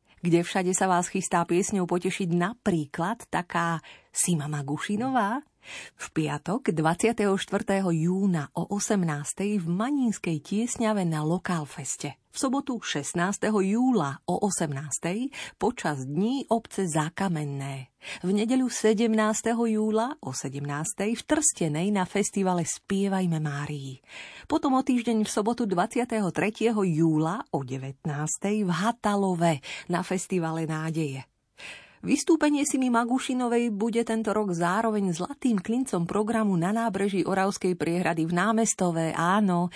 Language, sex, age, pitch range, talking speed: Slovak, female, 30-49, 160-220 Hz, 115 wpm